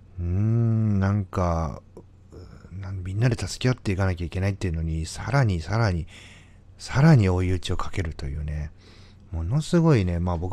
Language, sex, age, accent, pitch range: Japanese, male, 40-59, native, 85-105 Hz